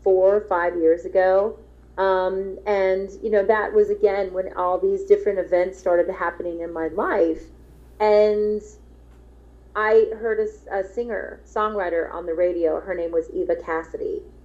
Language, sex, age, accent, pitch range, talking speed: English, female, 30-49, American, 175-215 Hz, 155 wpm